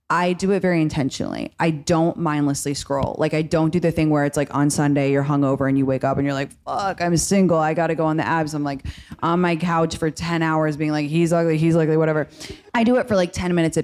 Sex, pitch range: female, 155-195 Hz